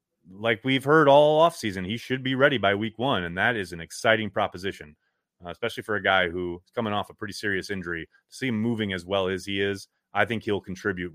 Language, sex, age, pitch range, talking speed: English, male, 30-49, 100-170 Hz, 225 wpm